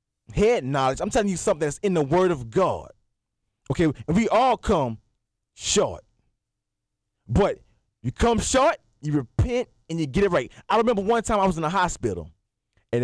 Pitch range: 115-195 Hz